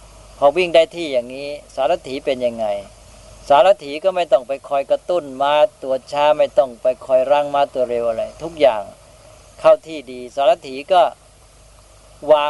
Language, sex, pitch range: Thai, female, 120-165 Hz